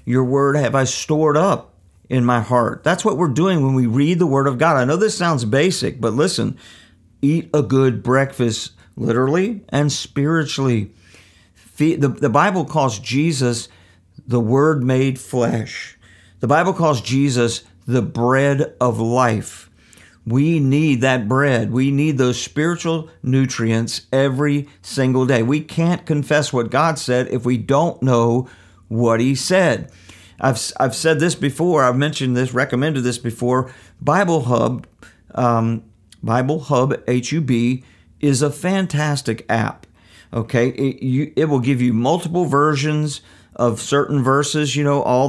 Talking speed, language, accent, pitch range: 145 wpm, English, American, 120-145 Hz